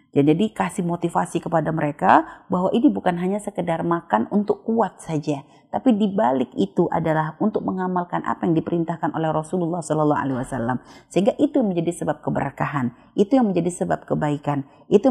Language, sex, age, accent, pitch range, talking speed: Indonesian, female, 30-49, native, 155-200 Hz, 160 wpm